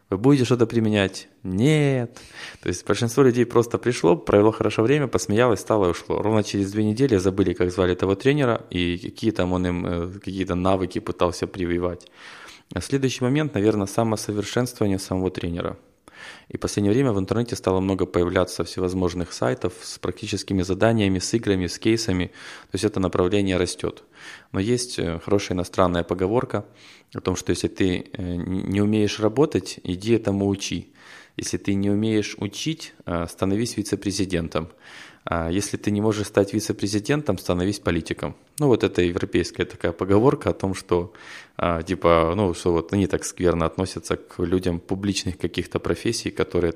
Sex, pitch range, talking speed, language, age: male, 90-110 Hz, 155 wpm, Russian, 20-39